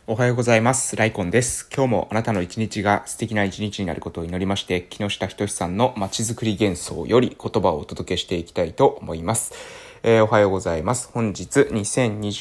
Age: 20-39